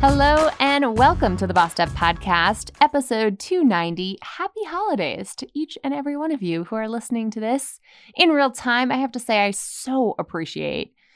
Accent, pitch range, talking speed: American, 160-250 Hz, 185 wpm